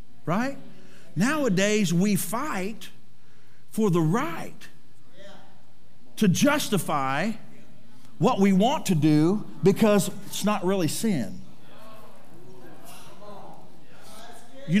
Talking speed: 80 wpm